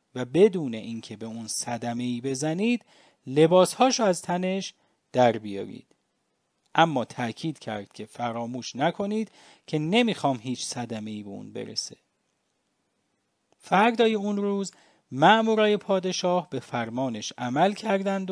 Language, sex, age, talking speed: English, male, 40-59, 120 wpm